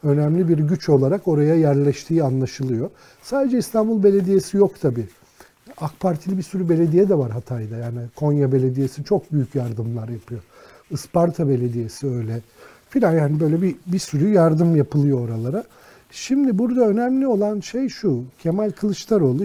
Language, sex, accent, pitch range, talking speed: Turkish, male, native, 130-170 Hz, 145 wpm